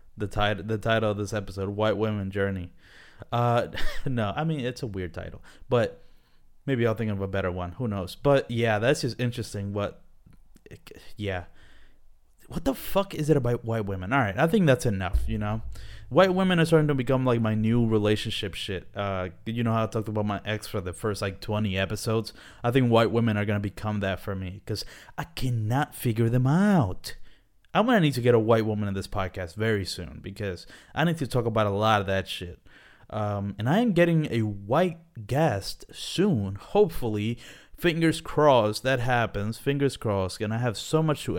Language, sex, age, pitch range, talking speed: English, male, 20-39, 100-130 Hz, 200 wpm